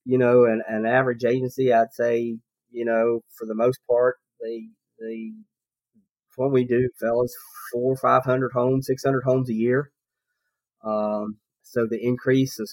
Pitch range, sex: 115-135 Hz, male